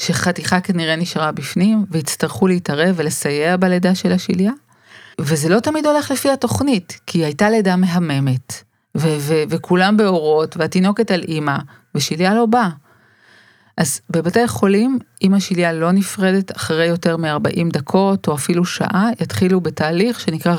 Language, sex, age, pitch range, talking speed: Hebrew, female, 40-59, 160-200 Hz, 135 wpm